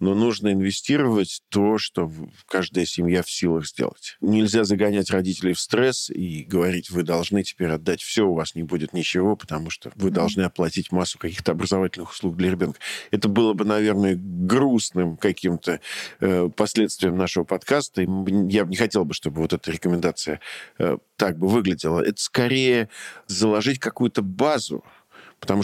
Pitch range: 90-110 Hz